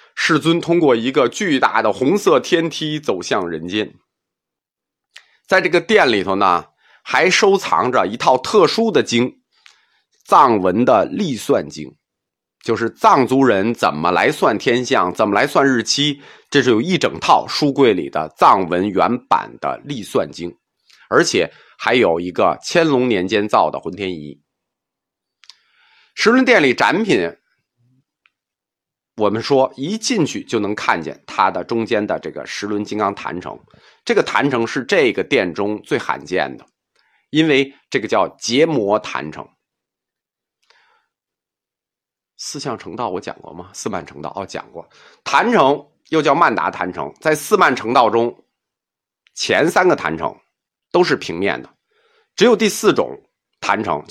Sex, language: male, Chinese